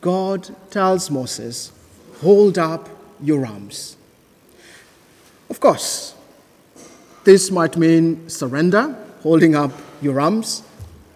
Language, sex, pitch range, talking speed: English, male, 155-205 Hz, 90 wpm